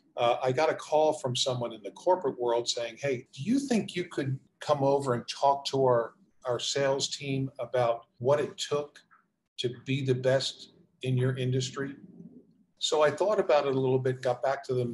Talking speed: 200 wpm